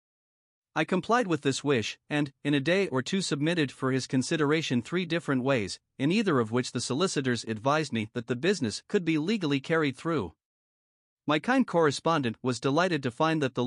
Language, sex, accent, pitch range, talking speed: English, male, American, 130-165 Hz, 190 wpm